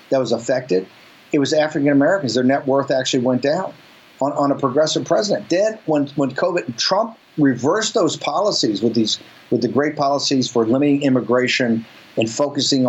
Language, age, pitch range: English, 50-69, 125-150 Hz